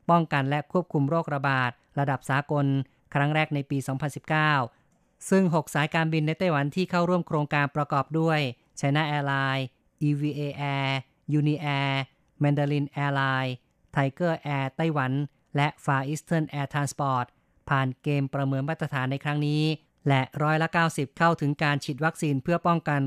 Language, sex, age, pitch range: Thai, female, 20-39, 140-165 Hz